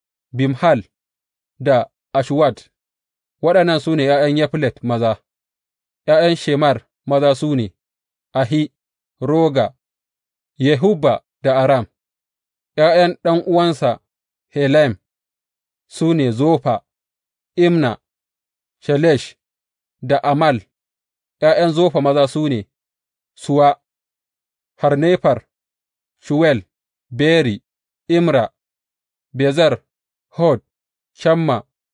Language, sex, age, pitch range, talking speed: English, male, 30-49, 100-155 Hz, 75 wpm